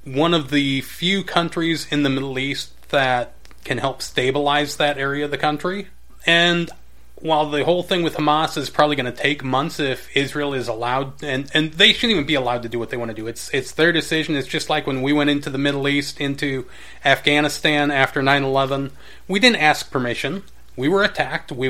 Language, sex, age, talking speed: English, male, 30-49, 205 wpm